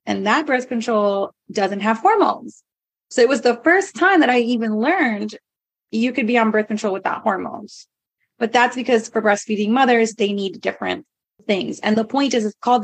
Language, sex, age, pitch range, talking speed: English, female, 20-39, 210-265 Hz, 190 wpm